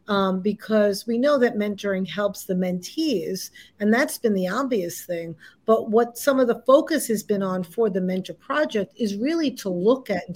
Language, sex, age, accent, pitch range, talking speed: English, female, 40-59, American, 190-255 Hz, 195 wpm